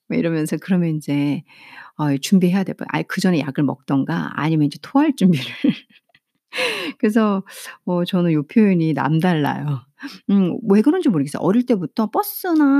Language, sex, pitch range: Korean, female, 170-255 Hz